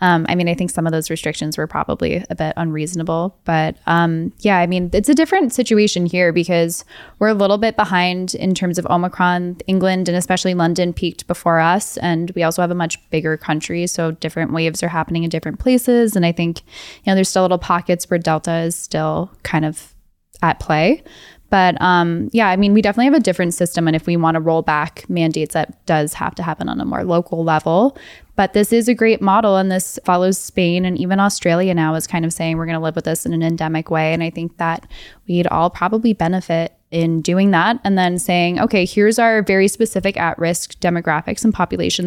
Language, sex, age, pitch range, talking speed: English, female, 10-29, 165-190 Hz, 215 wpm